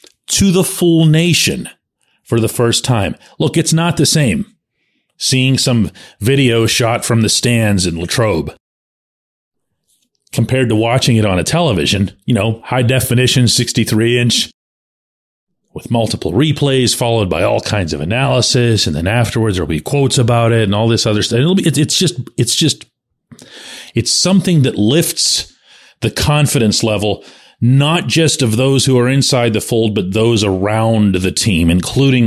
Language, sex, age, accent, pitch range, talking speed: English, male, 40-59, American, 110-140 Hz, 150 wpm